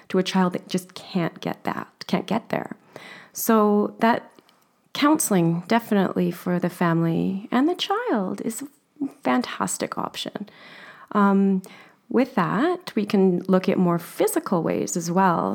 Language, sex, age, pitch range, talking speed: English, female, 30-49, 180-230 Hz, 145 wpm